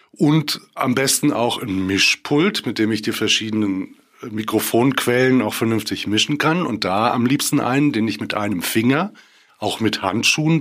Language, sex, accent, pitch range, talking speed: German, male, German, 115-155 Hz, 165 wpm